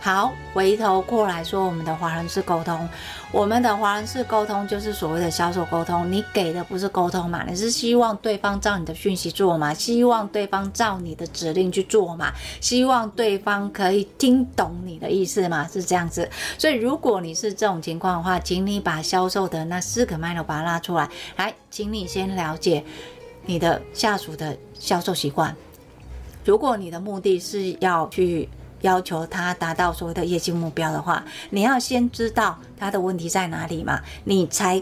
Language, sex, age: Chinese, female, 30-49